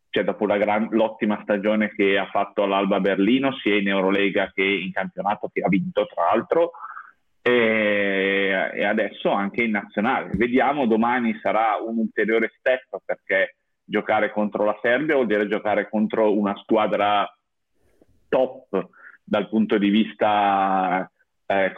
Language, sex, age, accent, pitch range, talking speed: Italian, male, 30-49, native, 100-120 Hz, 140 wpm